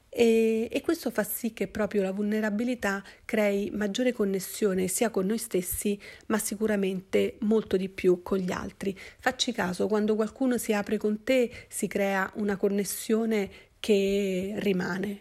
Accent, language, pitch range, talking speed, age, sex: native, Italian, 195-225 Hz, 150 wpm, 40-59, female